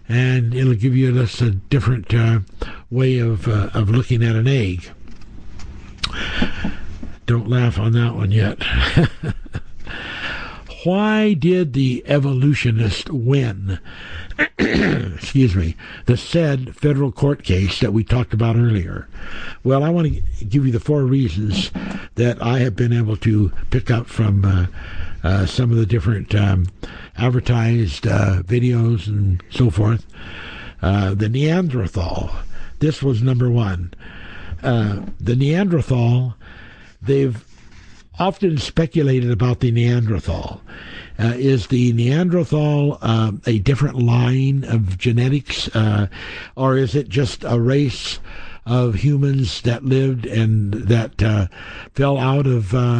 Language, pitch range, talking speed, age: English, 105-130 Hz, 130 wpm, 60-79